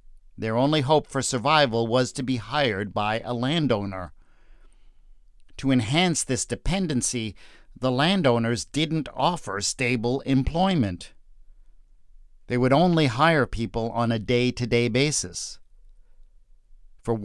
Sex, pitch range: male, 115-140 Hz